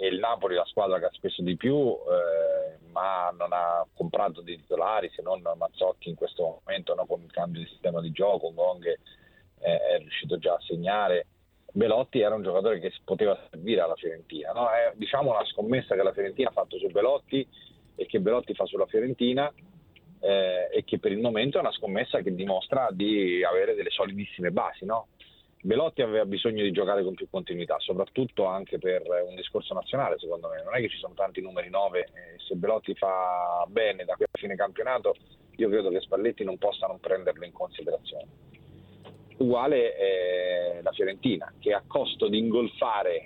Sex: male